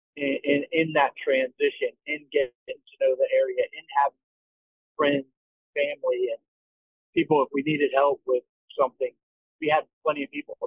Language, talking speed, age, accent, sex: English, 155 wpm, 40-59, American, male